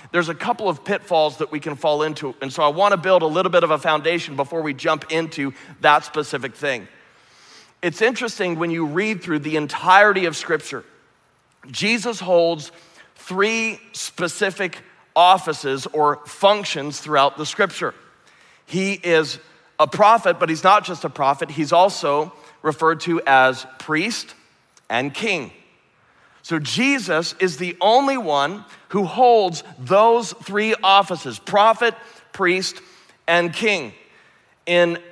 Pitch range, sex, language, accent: 155-195 Hz, male, English, American